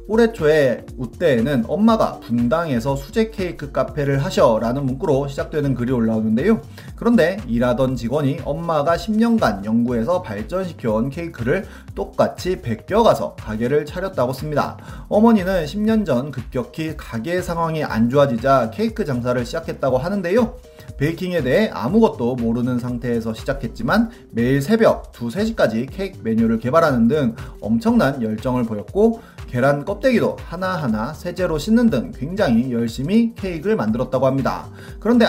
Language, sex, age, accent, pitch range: Korean, male, 30-49, native, 120-200 Hz